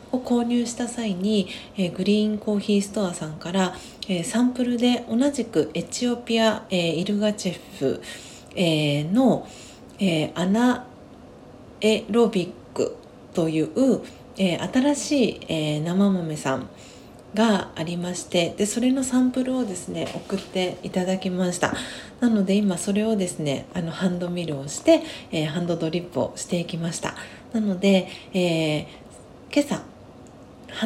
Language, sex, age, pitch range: Japanese, female, 40-59, 170-230 Hz